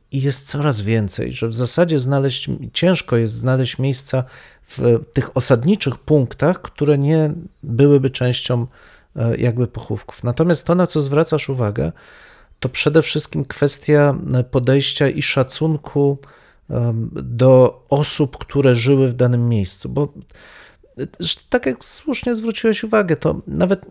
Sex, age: male, 40-59